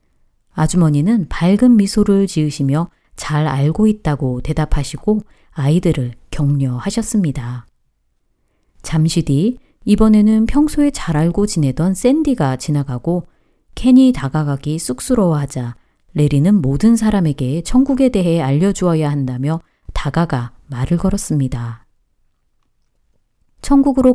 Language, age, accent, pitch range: Korean, 30-49, native, 135-200 Hz